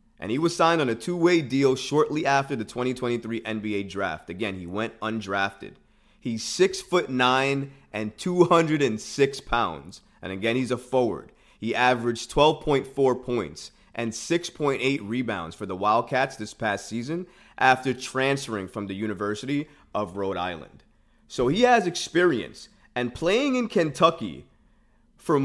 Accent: American